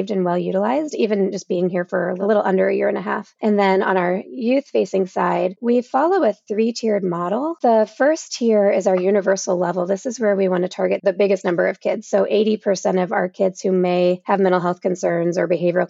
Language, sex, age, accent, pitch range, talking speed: English, female, 20-39, American, 180-205 Hz, 220 wpm